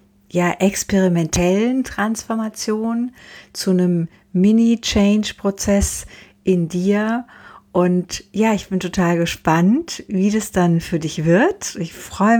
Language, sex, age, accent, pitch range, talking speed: German, female, 60-79, German, 170-200 Hz, 105 wpm